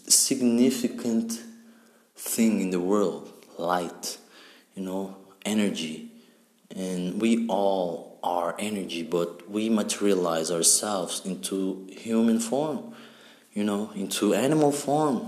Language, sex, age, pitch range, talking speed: English, male, 20-39, 95-120 Hz, 100 wpm